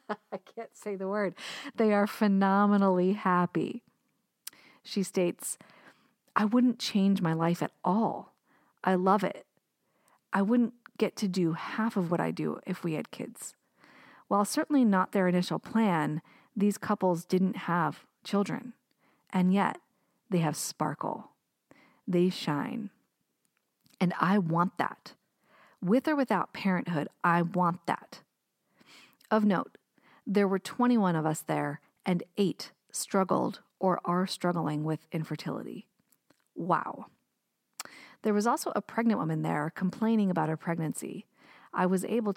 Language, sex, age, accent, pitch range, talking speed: English, female, 40-59, American, 175-210 Hz, 135 wpm